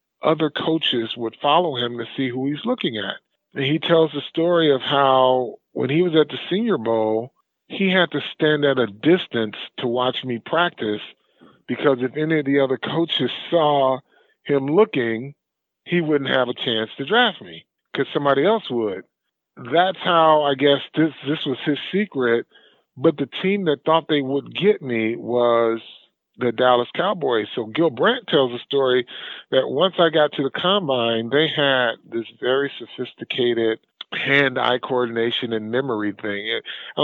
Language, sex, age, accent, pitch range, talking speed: English, male, 40-59, American, 125-155 Hz, 170 wpm